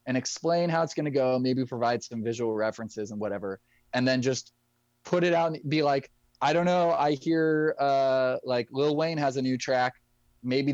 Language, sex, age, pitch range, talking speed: English, male, 20-39, 120-150 Hz, 205 wpm